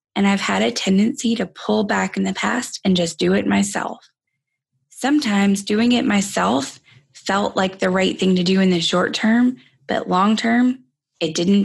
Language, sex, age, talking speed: English, female, 20-39, 185 wpm